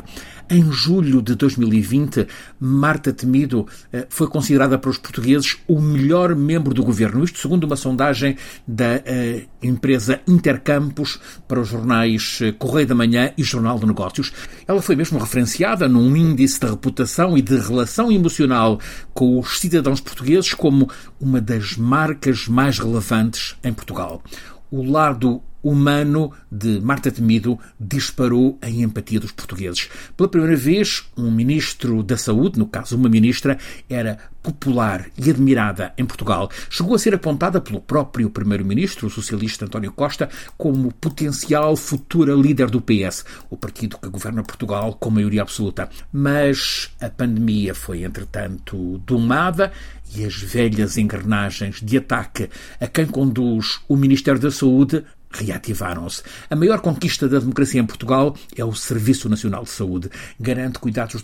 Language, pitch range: Portuguese, 110-140 Hz